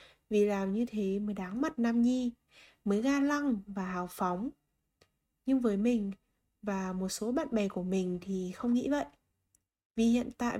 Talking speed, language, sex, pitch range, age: 180 wpm, Vietnamese, female, 200-265 Hz, 20-39